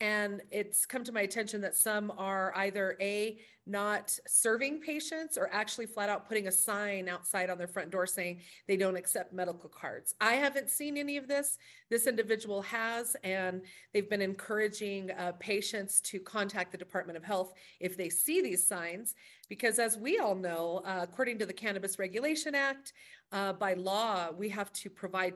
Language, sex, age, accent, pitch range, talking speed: English, female, 40-59, American, 185-230 Hz, 180 wpm